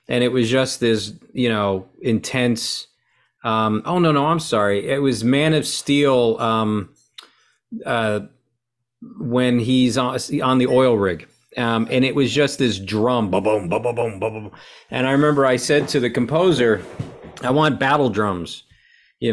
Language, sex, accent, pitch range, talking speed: English, male, American, 110-130 Hz, 155 wpm